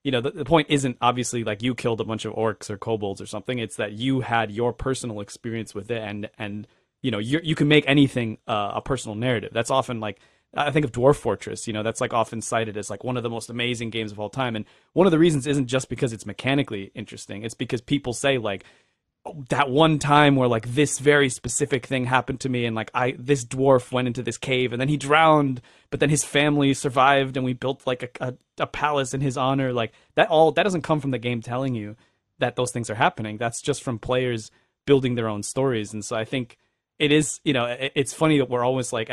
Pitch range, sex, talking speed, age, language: 115-135 Hz, male, 245 wpm, 20-39, English